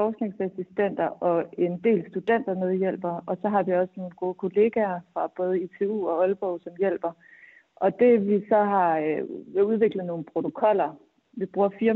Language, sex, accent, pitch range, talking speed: Danish, female, native, 170-205 Hz, 175 wpm